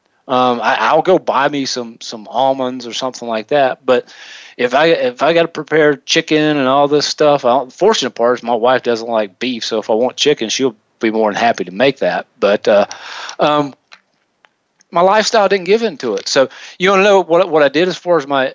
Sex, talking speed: male, 230 wpm